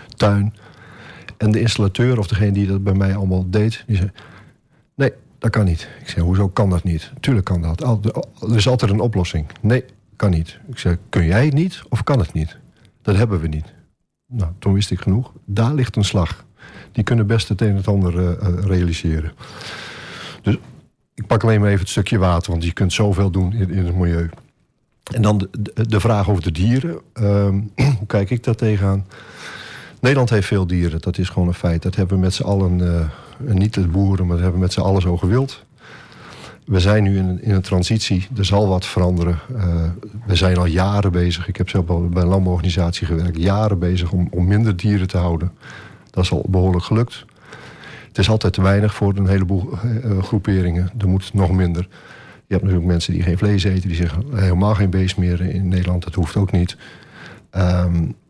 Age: 50-69